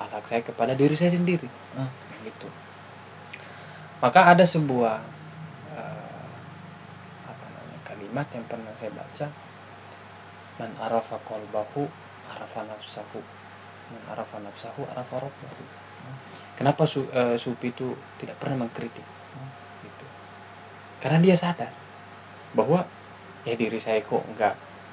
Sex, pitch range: male, 115-165 Hz